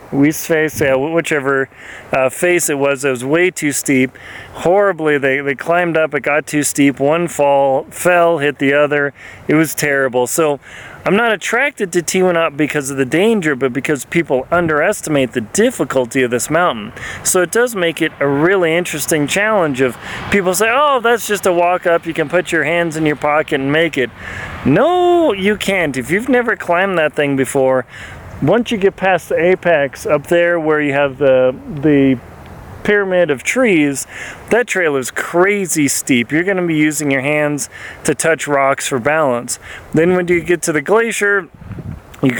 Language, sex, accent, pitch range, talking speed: English, male, American, 140-175 Hz, 185 wpm